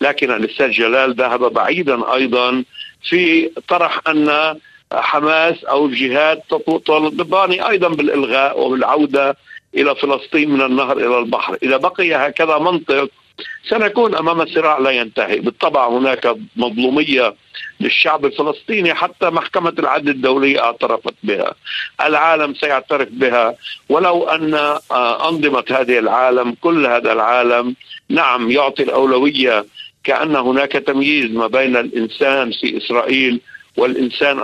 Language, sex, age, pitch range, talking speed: Arabic, male, 50-69, 125-155 Hz, 115 wpm